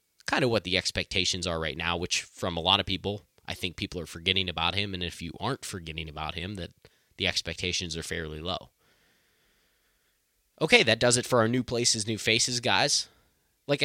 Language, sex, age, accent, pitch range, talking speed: English, male, 20-39, American, 90-110 Hz, 200 wpm